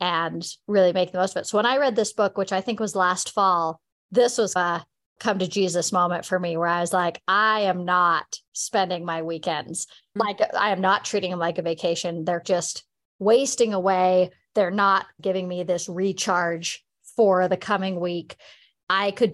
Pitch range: 180-225 Hz